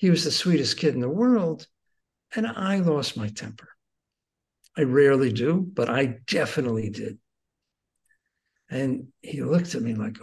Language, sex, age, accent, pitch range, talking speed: English, male, 60-79, American, 120-195 Hz, 155 wpm